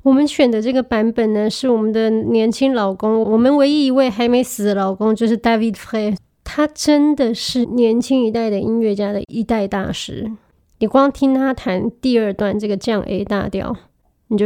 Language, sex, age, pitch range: Chinese, female, 20-39, 220-265 Hz